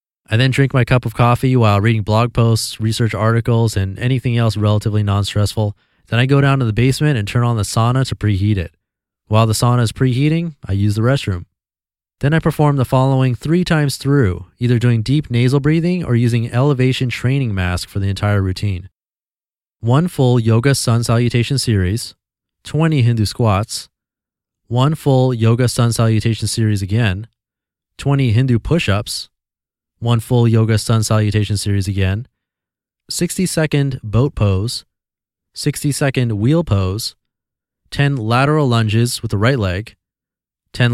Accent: American